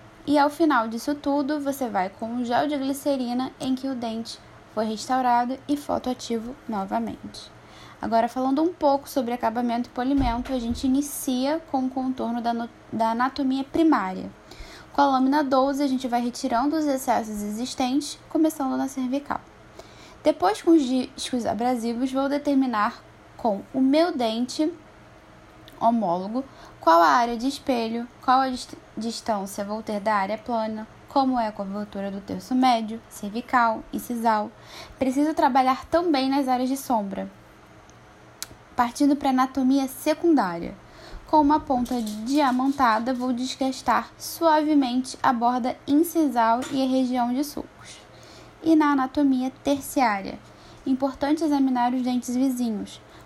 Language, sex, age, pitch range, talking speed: Portuguese, female, 10-29, 235-280 Hz, 140 wpm